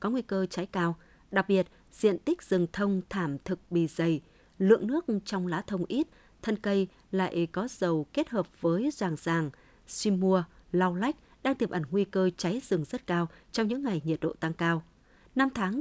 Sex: female